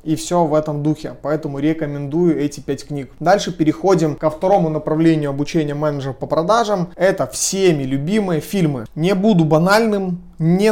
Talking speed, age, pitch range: 150 wpm, 30-49, 140-175 Hz